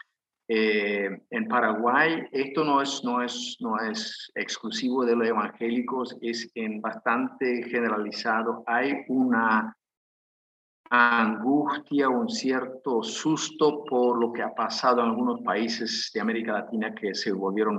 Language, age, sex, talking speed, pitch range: Spanish, 50-69, male, 130 wpm, 110-150 Hz